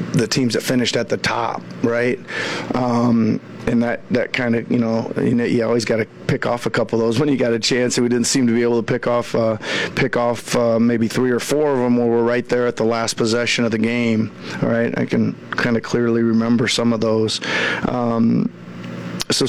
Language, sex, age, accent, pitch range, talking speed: English, male, 40-59, American, 115-125 Hz, 230 wpm